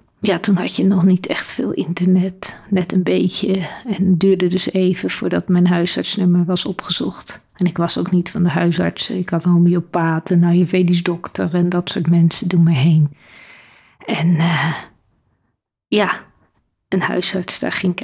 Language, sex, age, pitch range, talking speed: Dutch, female, 40-59, 175-220 Hz, 175 wpm